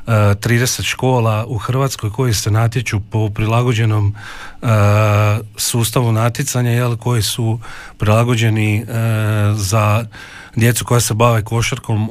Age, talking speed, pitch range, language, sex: 40-59, 100 wpm, 110-130 Hz, Croatian, male